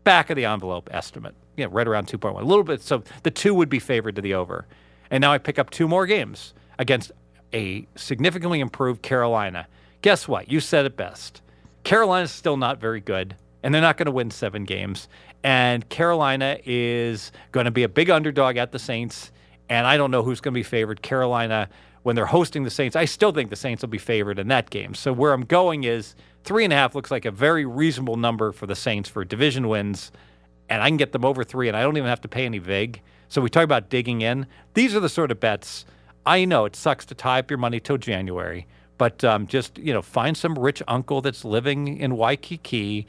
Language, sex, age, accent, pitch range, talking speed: English, male, 40-59, American, 105-145 Hz, 225 wpm